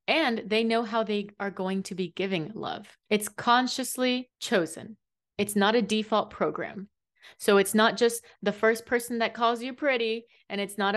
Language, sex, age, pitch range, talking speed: English, female, 20-39, 180-230 Hz, 180 wpm